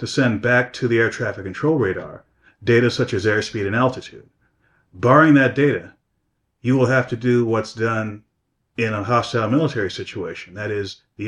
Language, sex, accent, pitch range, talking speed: English, male, American, 105-125 Hz, 175 wpm